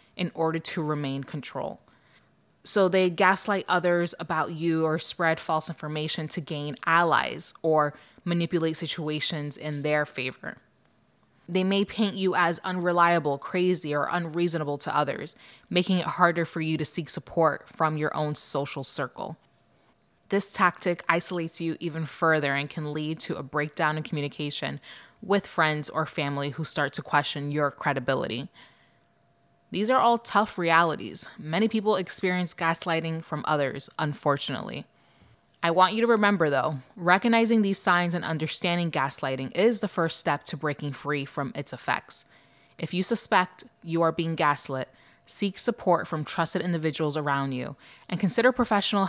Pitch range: 150-180 Hz